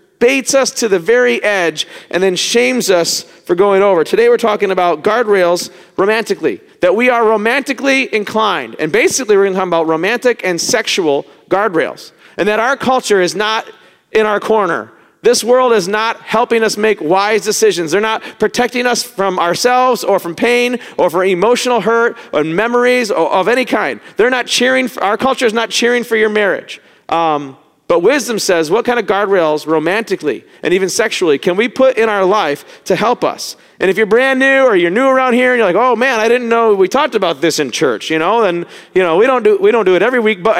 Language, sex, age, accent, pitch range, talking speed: English, male, 40-59, American, 200-255 Hz, 210 wpm